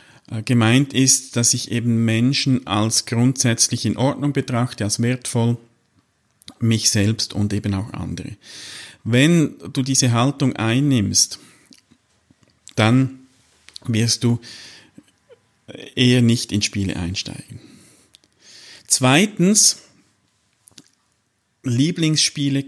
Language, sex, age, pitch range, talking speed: German, male, 50-69, 115-140 Hz, 90 wpm